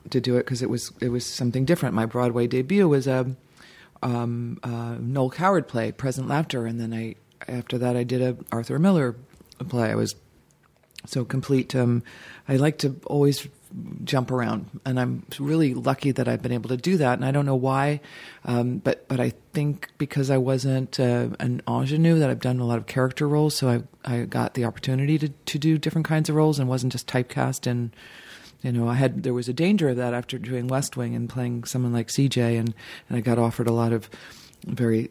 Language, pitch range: English, 120-135 Hz